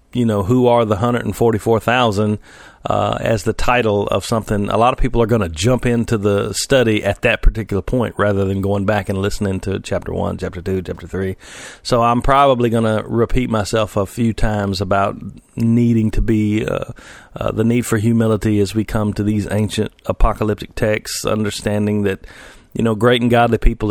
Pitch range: 100-120 Hz